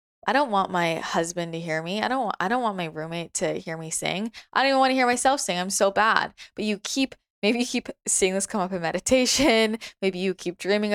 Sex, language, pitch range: female, English, 170-235 Hz